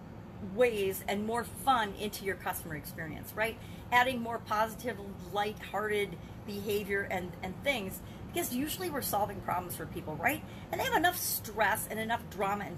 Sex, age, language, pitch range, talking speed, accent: female, 40-59, English, 190-250 Hz, 160 wpm, American